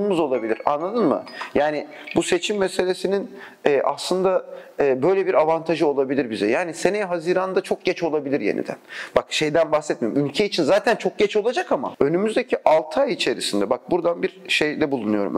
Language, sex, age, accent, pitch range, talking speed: Turkish, male, 40-59, native, 150-195 Hz, 150 wpm